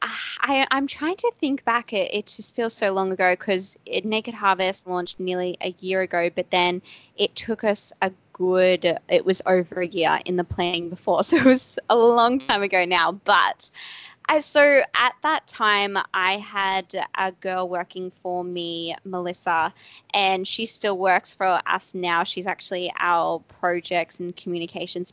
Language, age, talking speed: English, 20-39, 165 wpm